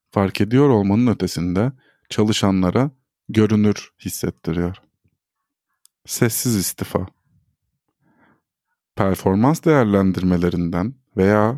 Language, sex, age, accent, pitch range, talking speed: Turkish, male, 50-69, native, 95-125 Hz, 60 wpm